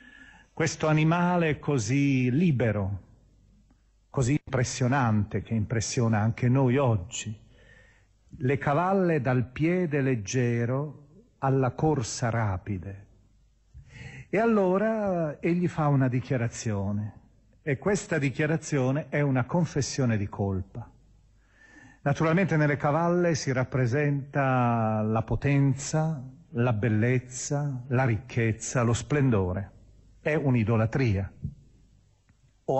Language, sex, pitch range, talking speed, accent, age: Italian, male, 105-140 Hz, 90 wpm, native, 40-59